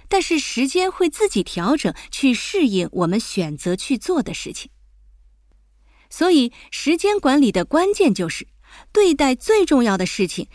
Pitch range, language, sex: 185-295 Hz, Chinese, female